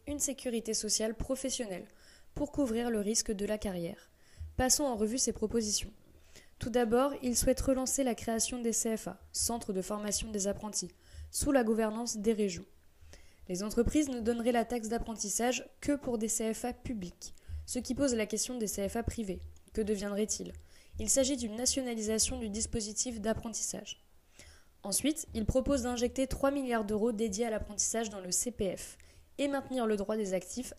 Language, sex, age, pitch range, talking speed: French, female, 20-39, 195-250 Hz, 160 wpm